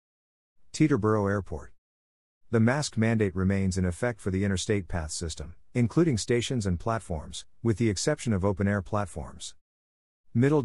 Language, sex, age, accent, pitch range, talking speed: English, male, 50-69, American, 90-110 Hz, 135 wpm